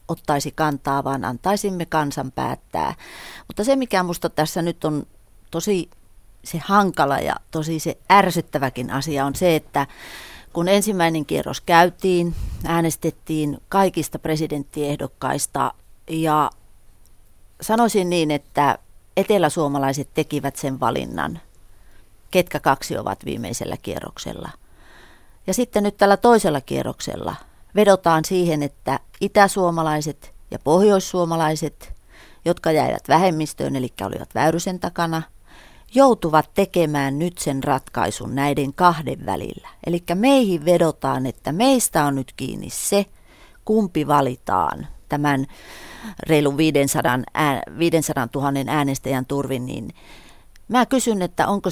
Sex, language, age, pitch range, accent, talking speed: female, Finnish, 30-49, 135-180 Hz, native, 110 wpm